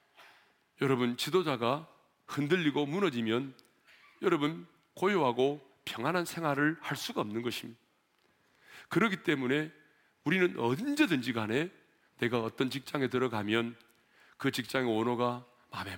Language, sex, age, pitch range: Korean, male, 40-59, 125-170 Hz